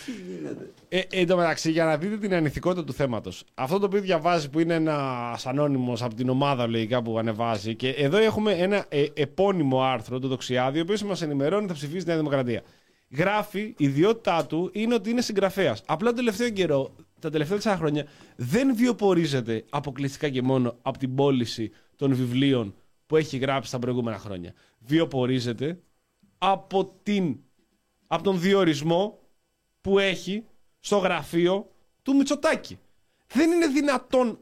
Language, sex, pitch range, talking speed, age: Greek, male, 140-200 Hz, 150 wpm, 30-49